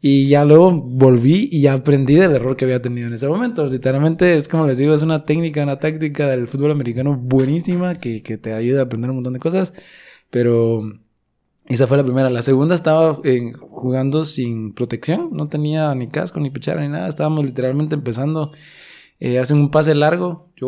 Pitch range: 125-155 Hz